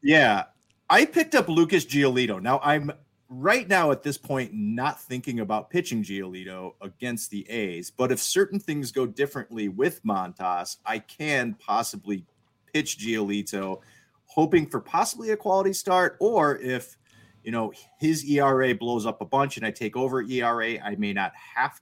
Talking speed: 160 wpm